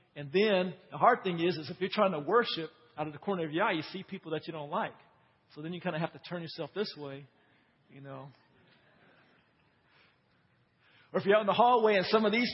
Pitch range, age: 150-200 Hz, 50-69